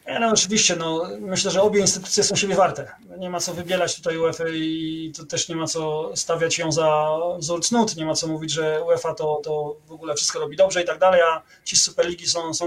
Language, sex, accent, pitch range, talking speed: Polish, male, native, 165-195 Hz, 225 wpm